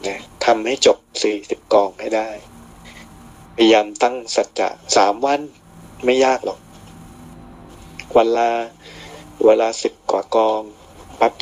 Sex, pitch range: male, 80-115 Hz